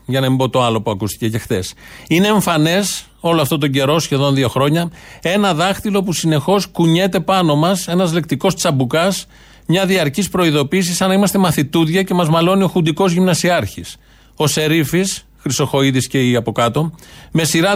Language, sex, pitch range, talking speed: Greek, male, 135-180 Hz, 170 wpm